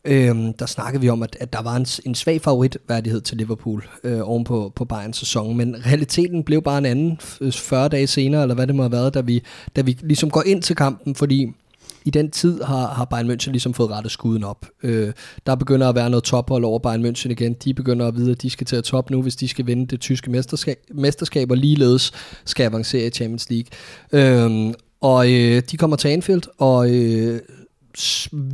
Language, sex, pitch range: Danish, male, 120-140 Hz